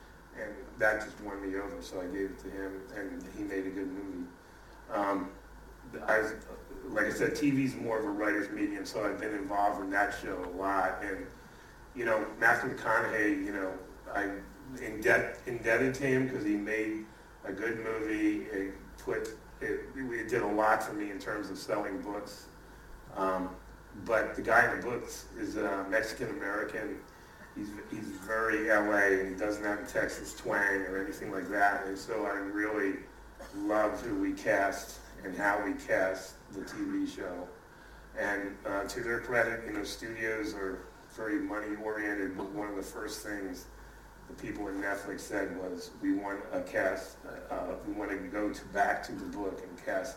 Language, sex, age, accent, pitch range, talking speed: English, male, 30-49, American, 95-110 Hz, 180 wpm